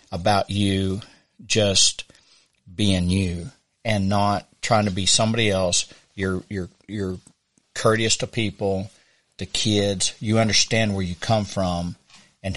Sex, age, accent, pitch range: male, 50-69, American, 95-110 Hz